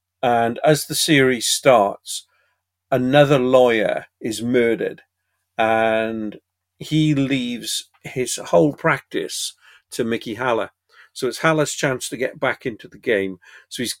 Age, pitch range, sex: 50-69, 105-135 Hz, male